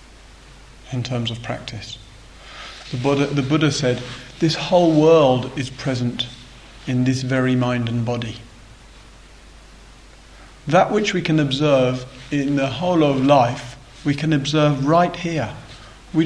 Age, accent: 40-59, British